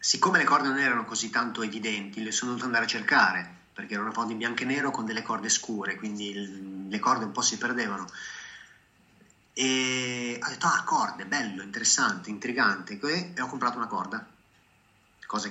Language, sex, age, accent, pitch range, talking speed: Italian, male, 30-49, native, 105-130 Hz, 180 wpm